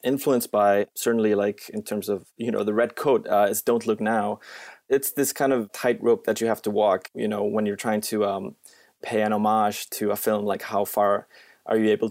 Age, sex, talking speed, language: 20-39, male, 230 wpm, English